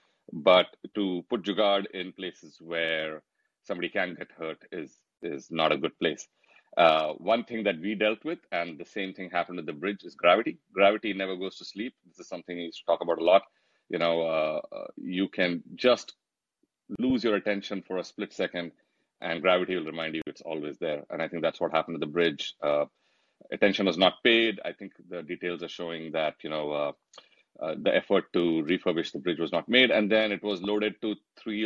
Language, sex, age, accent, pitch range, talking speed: English, male, 30-49, Indian, 85-105 Hz, 210 wpm